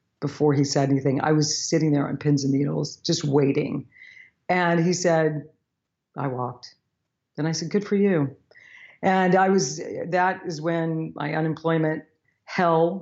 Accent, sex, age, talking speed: American, female, 50-69, 155 wpm